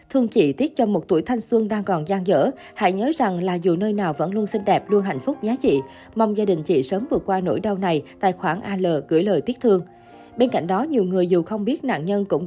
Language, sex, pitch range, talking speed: Vietnamese, female, 180-235 Hz, 270 wpm